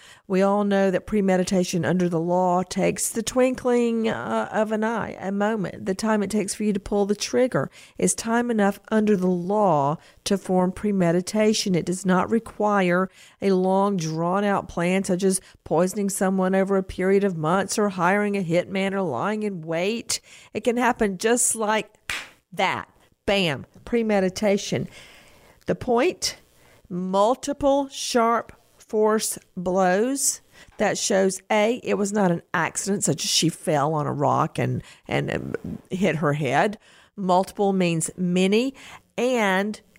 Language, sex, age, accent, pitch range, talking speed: English, female, 50-69, American, 180-215 Hz, 150 wpm